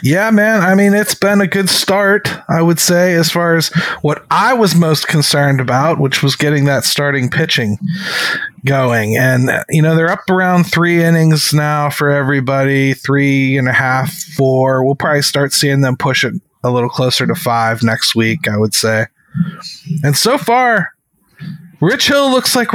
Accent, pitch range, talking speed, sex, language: American, 135-175 Hz, 180 wpm, male, English